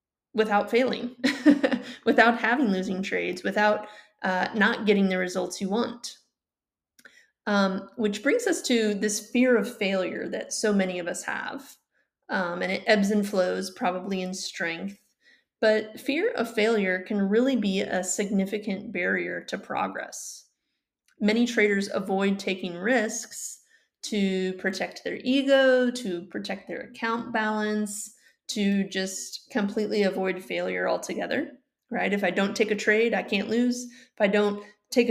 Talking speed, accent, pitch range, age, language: 145 wpm, American, 195-245 Hz, 30-49, English